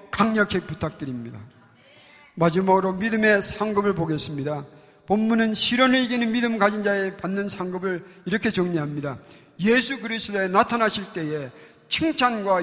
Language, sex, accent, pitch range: Korean, male, native, 155-220 Hz